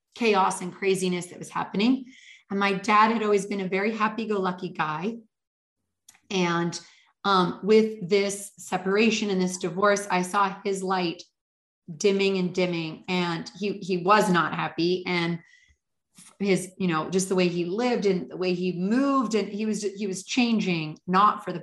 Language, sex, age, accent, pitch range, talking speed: English, female, 30-49, American, 185-225 Hz, 165 wpm